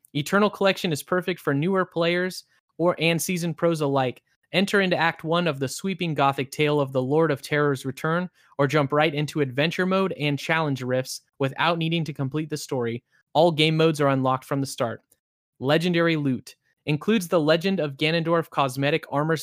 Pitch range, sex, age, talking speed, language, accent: 140-175 Hz, male, 20-39, 180 wpm, English, American